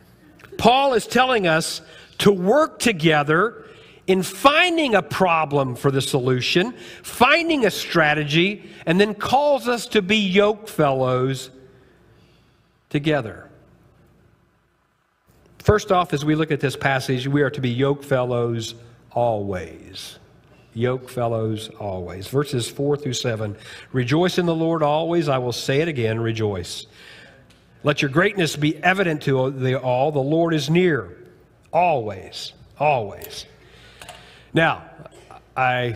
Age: 50-69